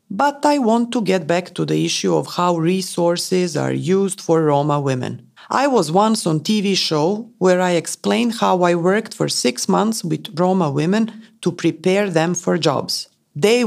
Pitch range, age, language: 170-220 Hz, 40-59, English